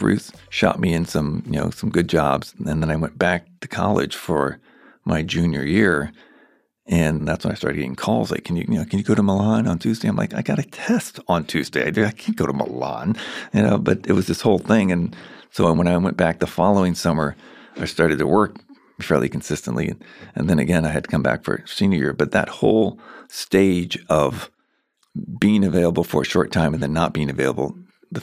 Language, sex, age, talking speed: English, male, 50-69, 220 wpm